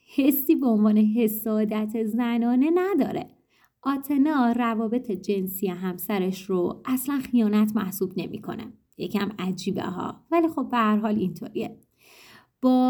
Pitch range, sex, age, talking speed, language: 195-255 Hz, female, 30-49, 110 wpm, Persian